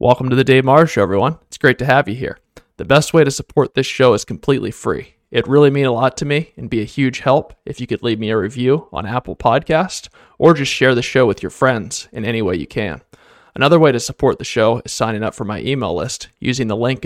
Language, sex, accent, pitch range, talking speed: English, male, American, 115-140 Hz, 260 wpm